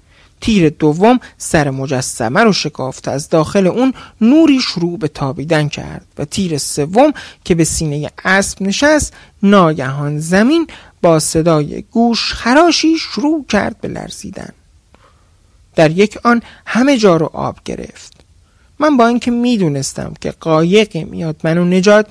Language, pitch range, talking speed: Persian, 145-235 Hz, 140 wpm